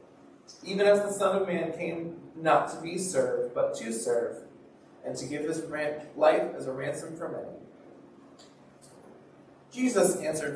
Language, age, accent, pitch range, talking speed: English, 30-49, American, 120-170 Hz, 150 wpm